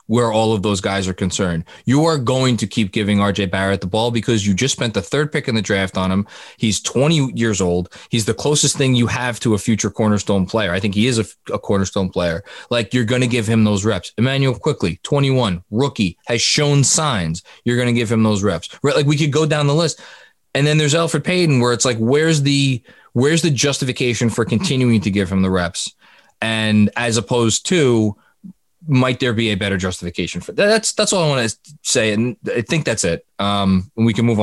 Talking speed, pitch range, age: 230 wpm, 105-150 Hz, 20-39